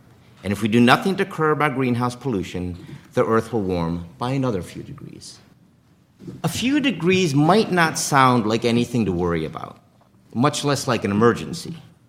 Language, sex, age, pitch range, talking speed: English, male, 50-69, 110-145 Hz, 170 wpm